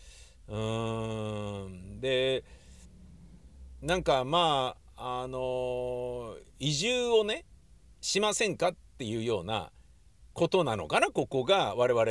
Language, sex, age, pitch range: Japanese, male, 50-69, 105-170 Hz